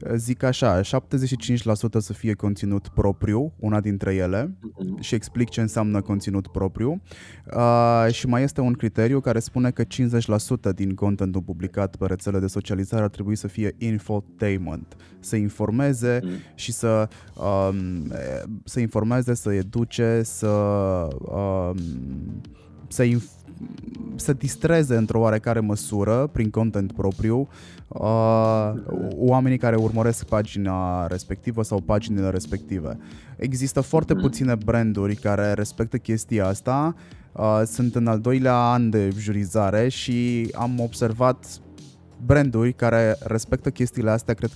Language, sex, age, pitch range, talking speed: Romanian, male, 20-39, 100-120 Hz, 125 wpm